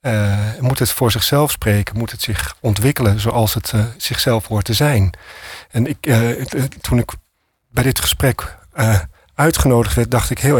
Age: 40-59